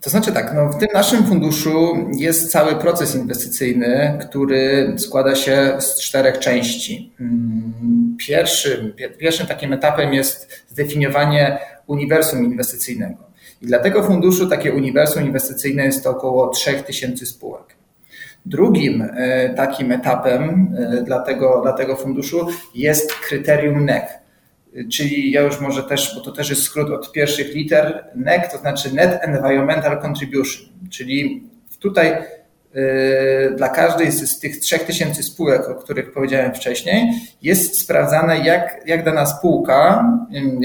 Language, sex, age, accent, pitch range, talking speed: Polish, male, 30-49, native, 135-170 Hz, 130 wpm